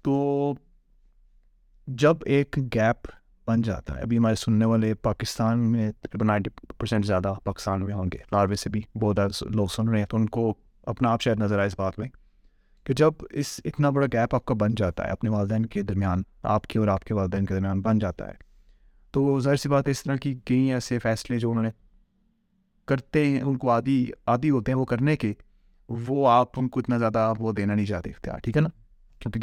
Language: Urdu